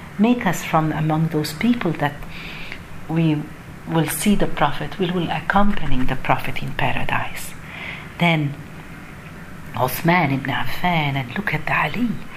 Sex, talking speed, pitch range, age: female, 135 wpm, 145-200 Hz, 50-69